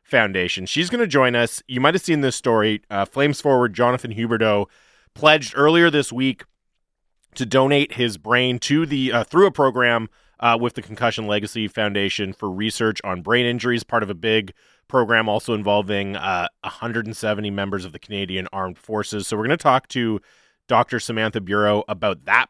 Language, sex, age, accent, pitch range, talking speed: English, male, 30-49, American, 105-130 Hz, 180 wpm